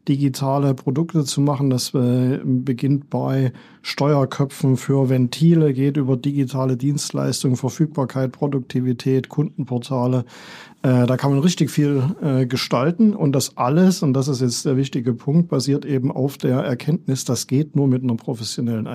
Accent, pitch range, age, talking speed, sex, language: German, 130-150 Hz, 40-59, 140 wpm, male, German